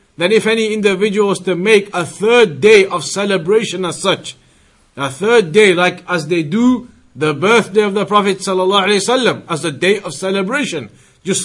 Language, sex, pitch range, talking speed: English, male, 180-215 Hz, 175 wpm